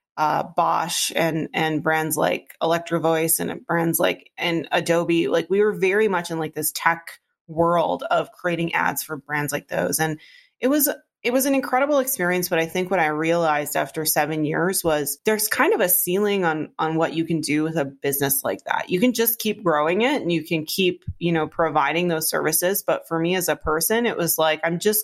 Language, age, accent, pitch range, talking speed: English, 30-49, American, 160-190 Hz, 215 wpm